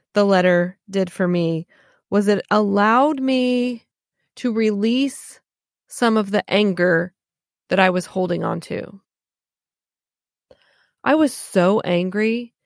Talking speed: 120 wpm